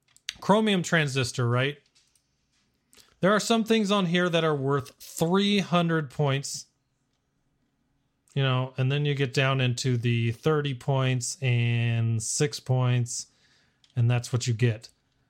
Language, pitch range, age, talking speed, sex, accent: English, 130-170 Hz, 30-49, 130 wpm, male, American